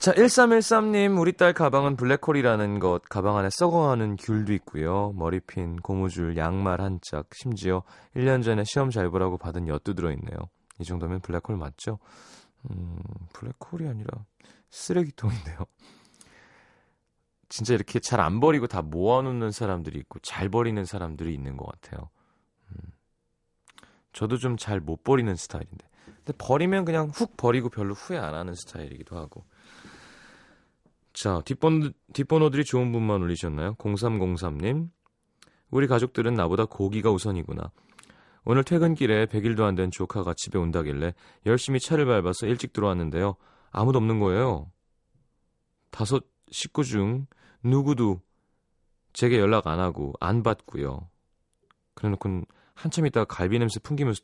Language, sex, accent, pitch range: Korean, male, native, 90-130 Hz